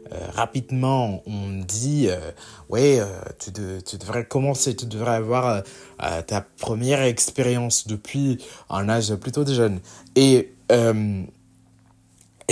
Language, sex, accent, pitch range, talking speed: French, male, French, 90-120 Hz, 145 wpm